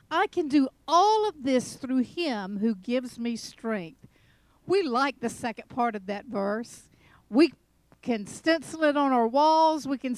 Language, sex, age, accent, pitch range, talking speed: English, female, 50-69, American, 220-295 Hz, 170 wpm